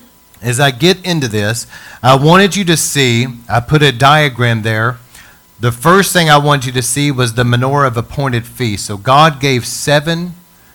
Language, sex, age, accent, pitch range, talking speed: English, male, 40-59, American, 115-155 Hz, 185 wpm